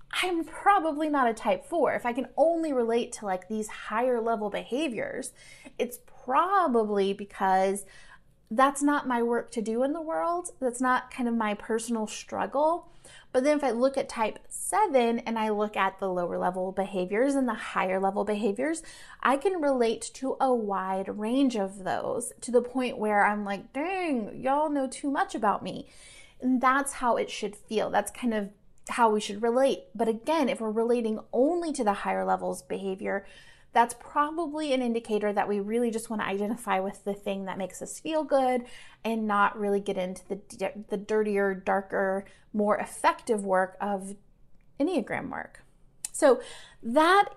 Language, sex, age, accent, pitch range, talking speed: English, female, 30-49, American, 205-280 Hz, 175 wpm